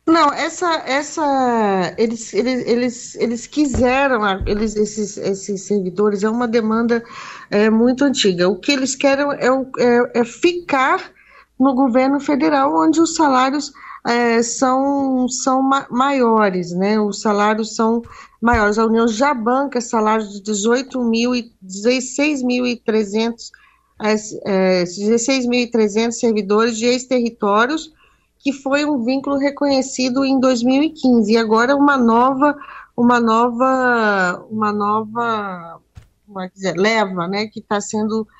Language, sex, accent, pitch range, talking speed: Portuguese, female, Brazilian, 220-275 Hz, 125 wpm